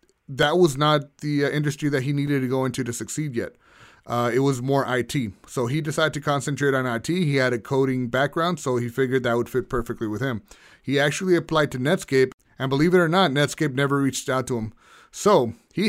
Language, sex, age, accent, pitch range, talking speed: English, male, 30-49, American, 125-165 Hz, 225 wpm